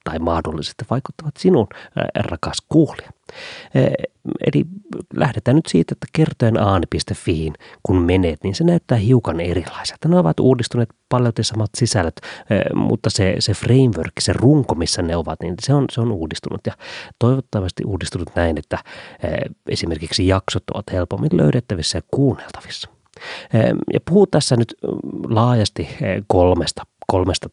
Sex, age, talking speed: male, 30-49, 140 wpm